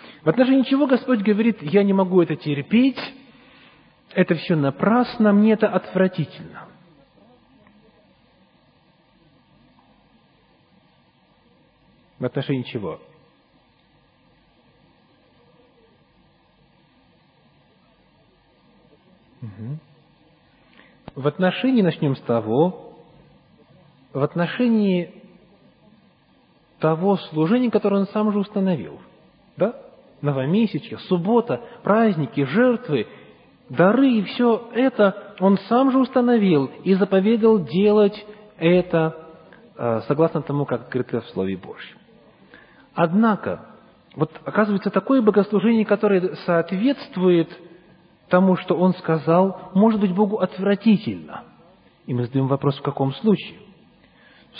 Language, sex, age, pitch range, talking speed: English, male, 40-59, 150-215 Hz, 90 wpm